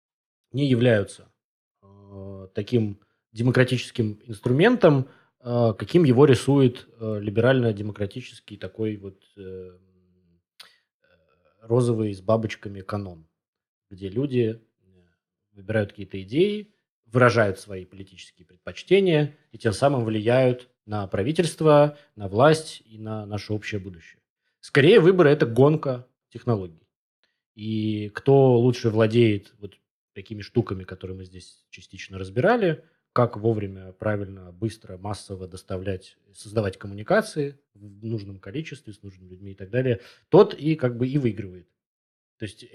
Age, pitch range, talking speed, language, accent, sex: 20-39, 100-125 Hz, 120 wpm, Russian, native, male